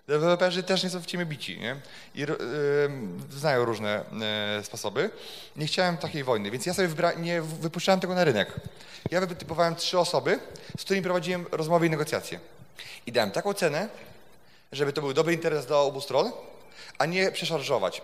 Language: Polish